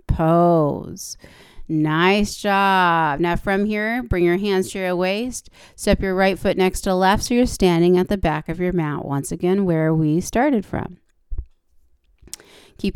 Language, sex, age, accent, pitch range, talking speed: English, female, 30-49, American, 175-205 Hz, 160 wpm